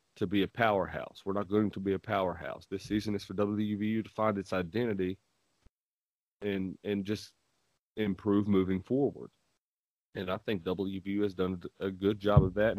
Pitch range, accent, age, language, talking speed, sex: 95-110 Hz, American, 30-49, English, 175 wpm, male